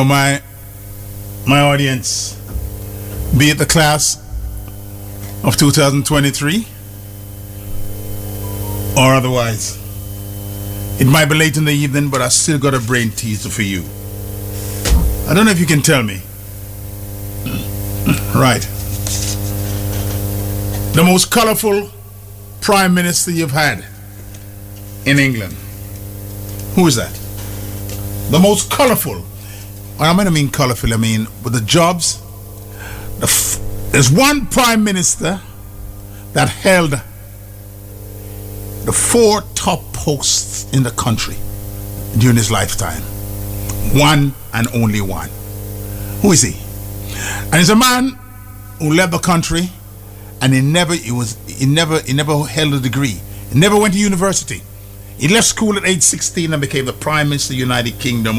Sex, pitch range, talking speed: male, 100-145 Hz, 130 wpm